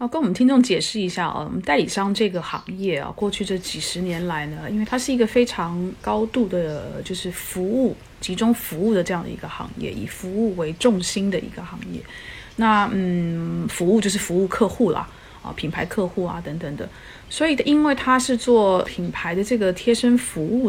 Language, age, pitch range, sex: Chinese, 30-49, 180-230 Hz, female